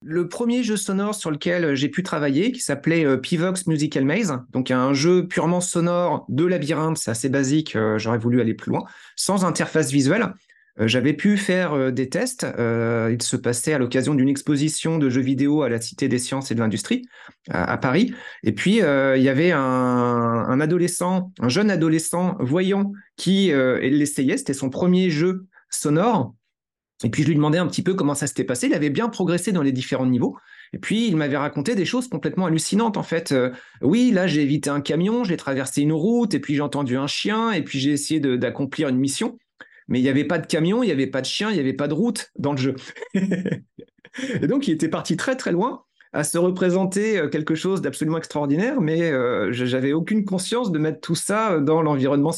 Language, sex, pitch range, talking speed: French, male, 135-180 Hz, 205 wpm